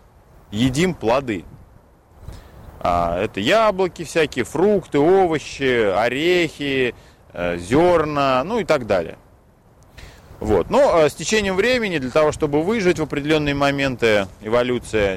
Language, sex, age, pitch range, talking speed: Russian, male, 30-49, 105-155 Hz, 100 wpm